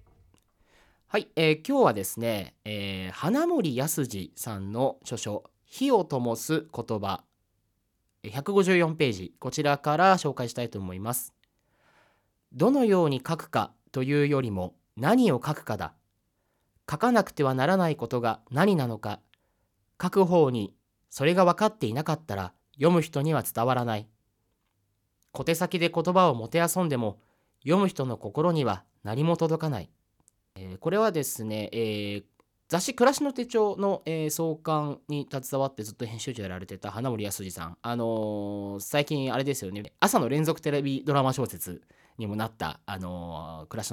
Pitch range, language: 100-155 Hz, Japanese